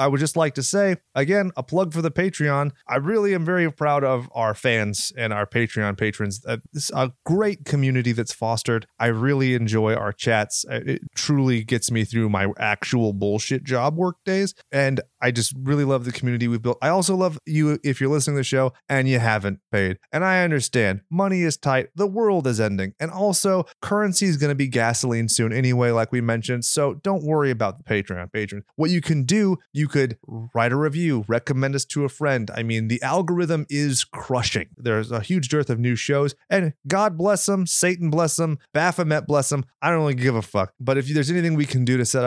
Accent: American